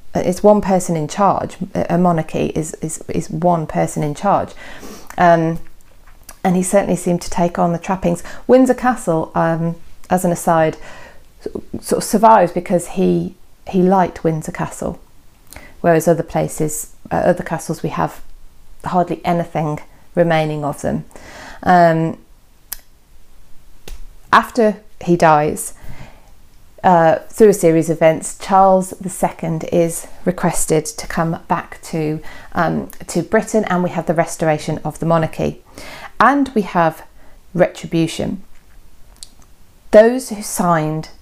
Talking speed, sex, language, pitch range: 130 wpm, female, English, 155-180 Hz